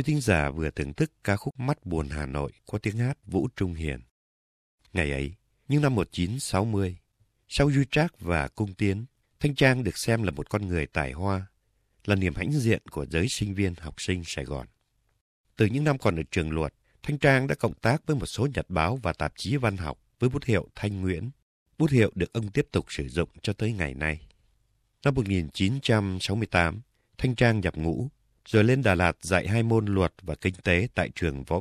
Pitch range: 85-115 Hz